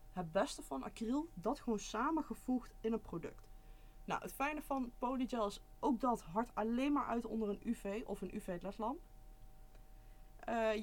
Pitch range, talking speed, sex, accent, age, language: 195-245 Hz, 165 wpm, female, Dutch, 20-39, Dutch